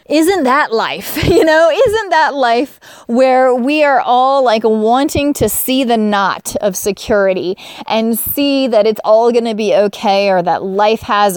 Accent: American